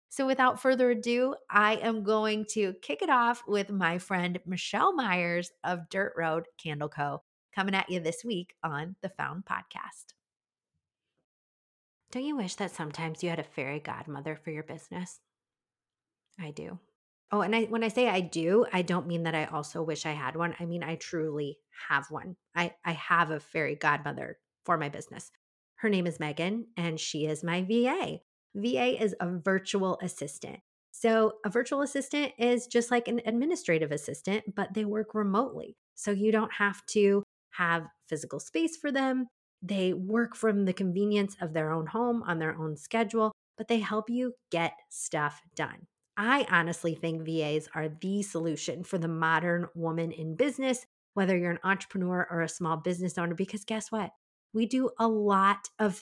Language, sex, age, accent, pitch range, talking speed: English, female, 30-49, American, 165-220 Hz, 175 wpm